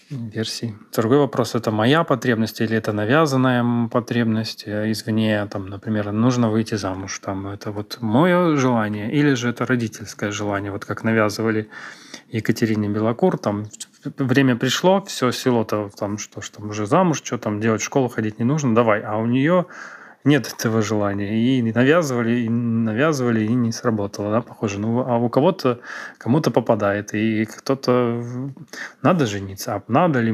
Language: Ukrainian